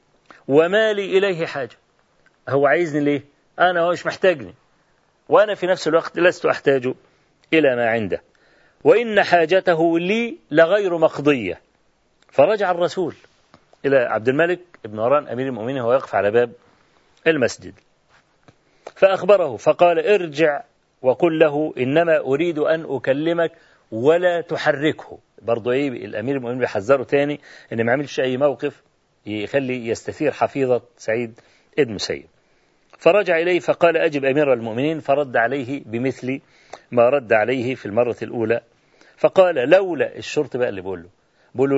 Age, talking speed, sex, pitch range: 40-59, 125 wpm, male, 130-170 Hz